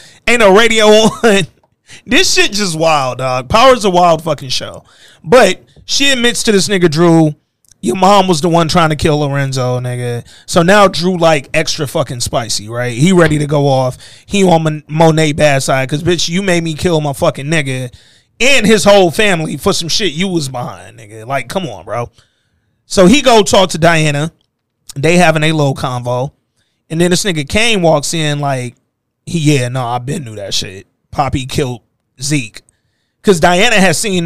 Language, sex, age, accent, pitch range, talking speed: English, male, 30-49, American, 140-185 Hz, 185 wpm